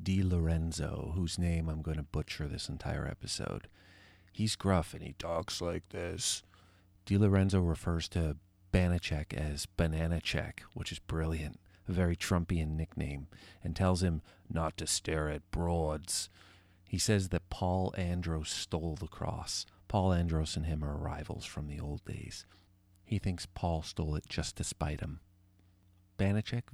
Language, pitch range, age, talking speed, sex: English, 80-95 Hz, 40-59, 155 wpm, male